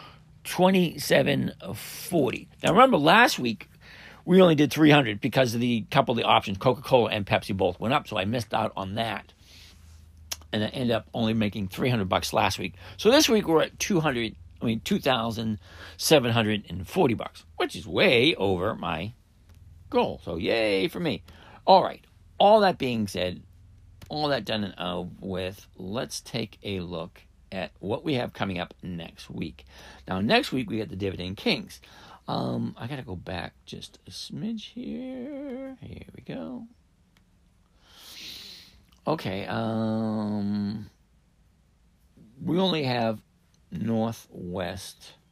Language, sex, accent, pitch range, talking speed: English, male, American, 90-130 Hz, 145 wpm